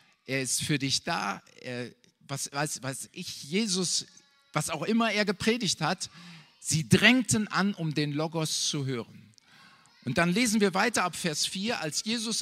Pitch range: 150-210 Hz